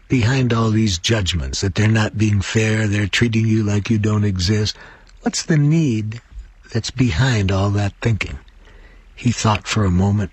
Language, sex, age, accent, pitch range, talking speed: English, male, 60-79, American, 95-130 Hz, 170 wpm